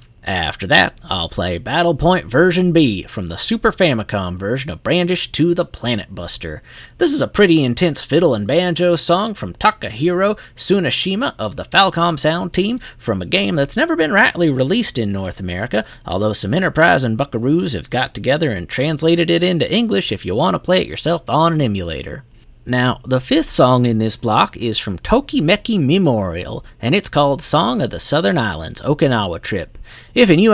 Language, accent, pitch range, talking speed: English, American, 115-175 Hz, 185 wpm